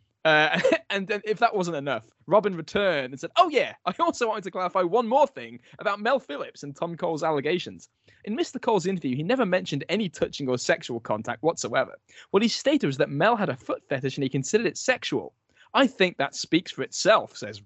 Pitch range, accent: 145-235 Hz, British